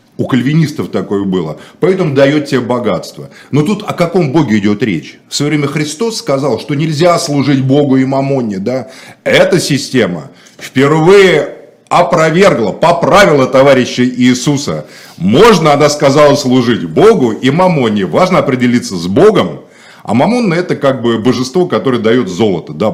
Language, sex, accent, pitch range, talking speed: Russian, male, native, 125-165 Hz, 145 wpm